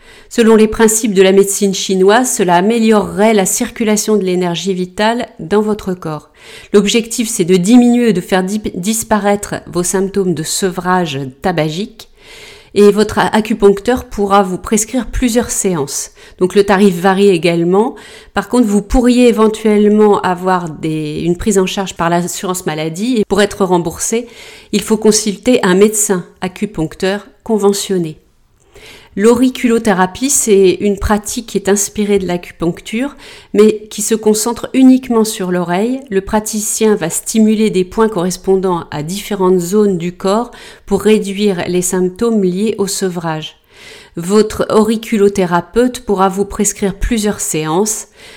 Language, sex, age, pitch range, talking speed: French, female, 40-59, 180-220 Hz, 135 wpm